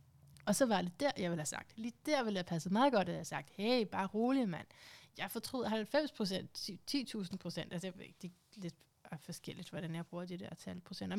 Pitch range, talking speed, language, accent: 170-210 Hz, 220 wpm, Danish, native